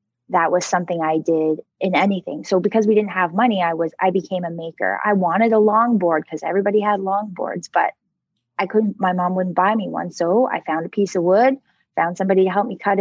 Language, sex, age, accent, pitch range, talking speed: English, female, 20-39, American, 170-205 Hz, 225 wpm